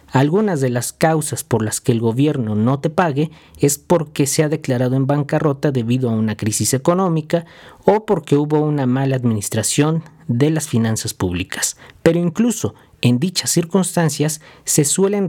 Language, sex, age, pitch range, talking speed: Spanish, male, 40-59, 125-165 Hz, 160 wpm